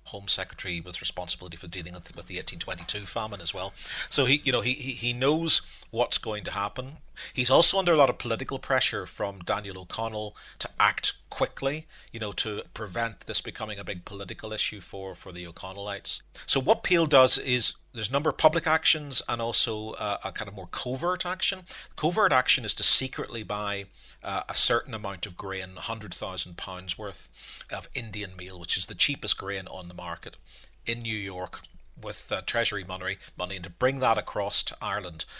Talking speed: 185 wpm